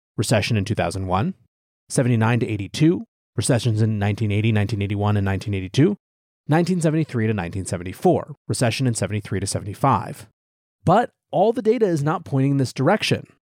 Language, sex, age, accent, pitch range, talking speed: English, male, 30-49, American, 115-165 Hz, 135 wpm